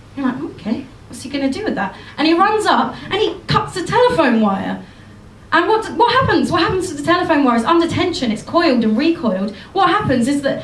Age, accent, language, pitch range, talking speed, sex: 30-49, British, English, 225-320 Hz, 225 wpm, female